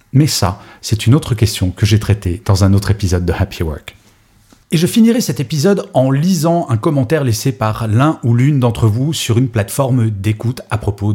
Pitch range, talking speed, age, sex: 105-140 Hz, 205 wpm, 30-49, male